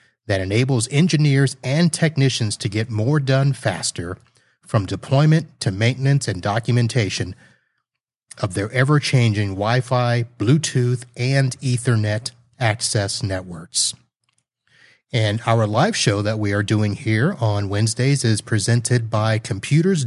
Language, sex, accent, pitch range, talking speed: English, male, American, 110-135 Hz, 120 wpm